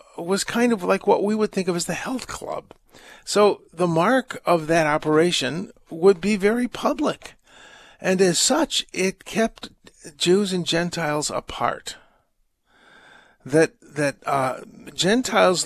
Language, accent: English, American